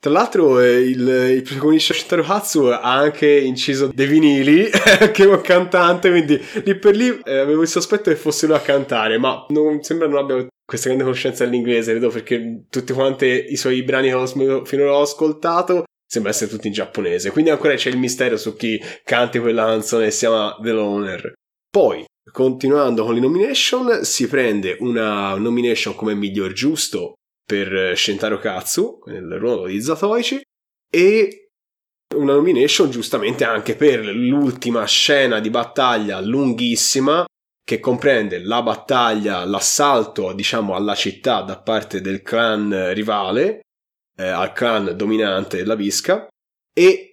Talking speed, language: 155 wpm, Italian